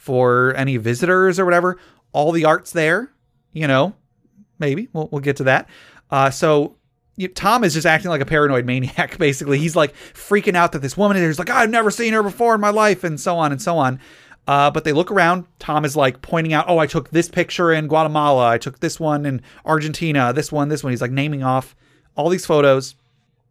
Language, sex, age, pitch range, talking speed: English, male, 30-49, 130-165 Hz, 220 wpm